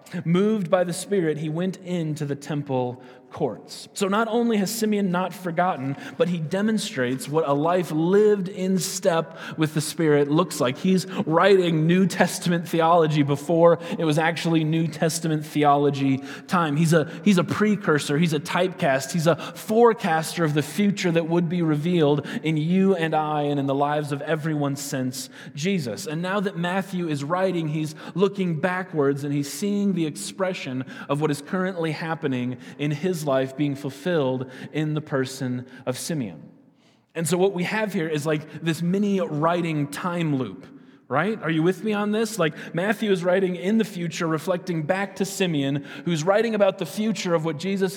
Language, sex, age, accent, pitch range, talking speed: English, male, 20-39, American, 145-185 Hz, 175 wpm